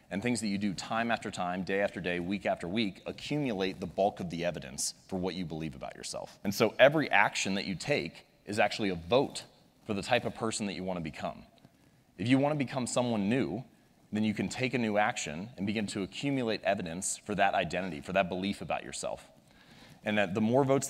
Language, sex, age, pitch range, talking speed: Hindi, male, 30-49, 95-120 Hz, 225 wpm